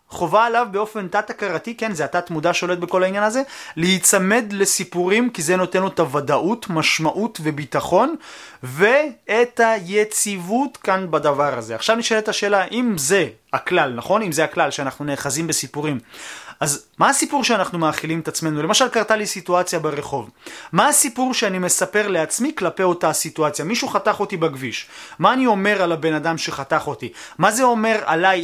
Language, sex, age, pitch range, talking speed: Hebrew, male, 30-49, 160-225 Hz, 160 wpm